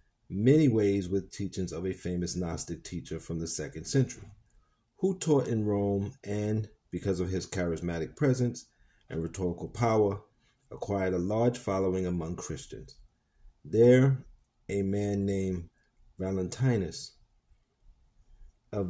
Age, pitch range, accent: 40-59, 95-120 Hz, American